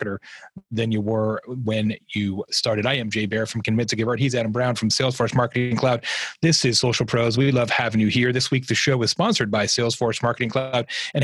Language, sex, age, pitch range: English, male, 30-49, 120-170 Hz